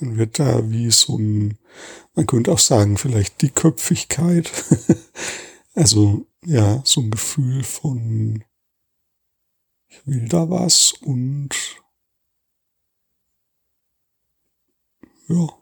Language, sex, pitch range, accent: German, male, 115-155 Hz, German